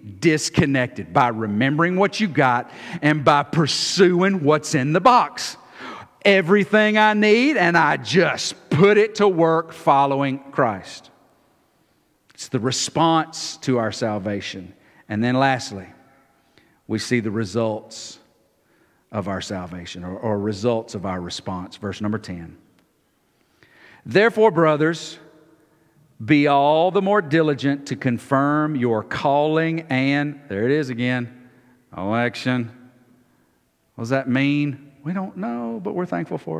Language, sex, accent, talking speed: English, male, American, 130 wpm